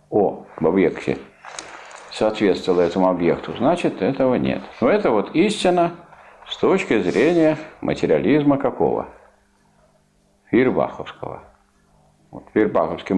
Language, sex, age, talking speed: Russian, male, 50-69, 85 wpm